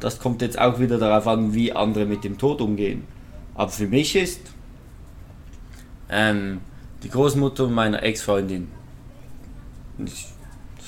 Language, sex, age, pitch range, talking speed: German, male, 20-39, 100-130 Hz, 125 wpm